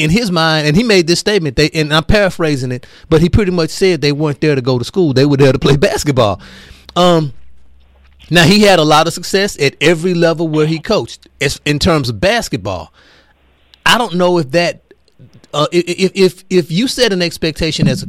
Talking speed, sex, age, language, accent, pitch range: 220 wpm, male, 30-49, English, American, 140-180 Hz